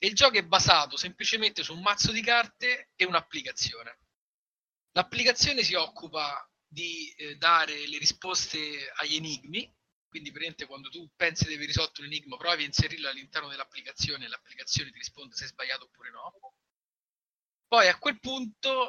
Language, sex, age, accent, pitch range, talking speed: Italian, male, 30-49, native, 155-220 Hz, 160 wpm